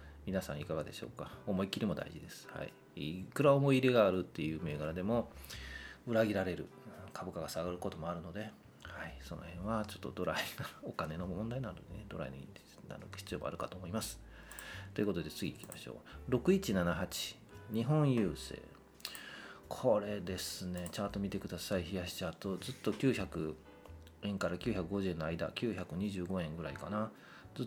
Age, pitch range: 40-59, 85-105 Hz